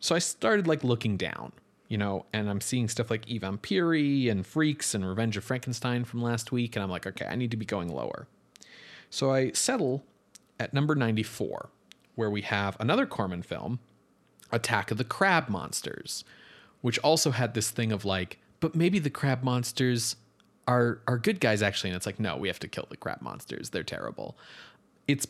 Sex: male